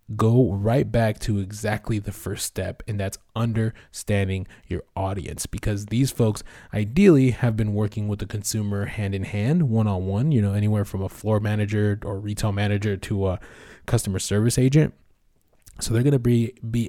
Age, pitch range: 20-39, 100-120 Hz